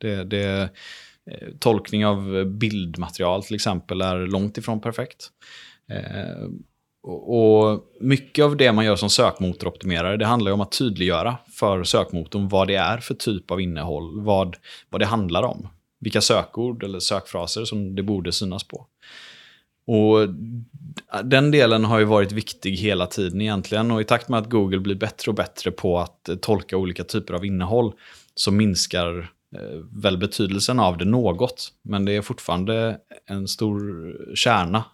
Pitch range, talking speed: 95-115 Hz, 155 wpm